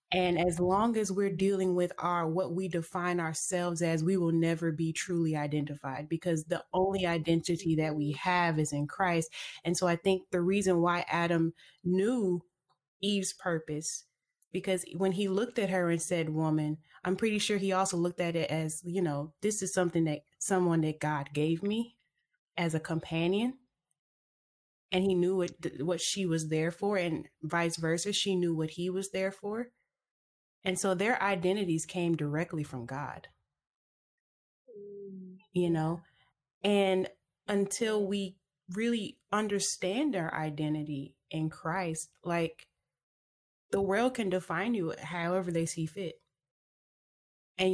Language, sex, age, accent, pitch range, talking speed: English, female, 20-39, American, 160-190 Hz, 150 wpm